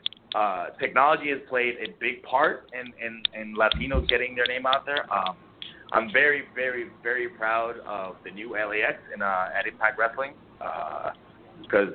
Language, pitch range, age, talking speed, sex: English, 100-120 Hz, 30-49, 160 wpm, male